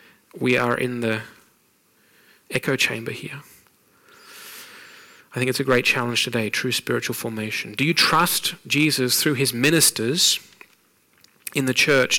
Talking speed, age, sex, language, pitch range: 135 wpm, 30-49, male, English, 125-150 Hz